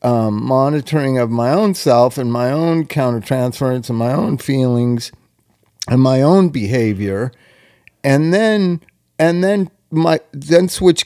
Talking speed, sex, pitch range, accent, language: 140 wpm, male, 120-150 Hz, American, English